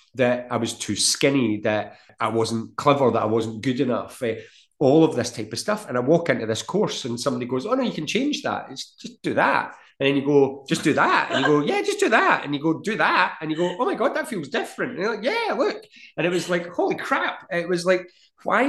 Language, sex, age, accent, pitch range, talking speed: English, male, 30-49, British, 110-140 Hz, 260 wpm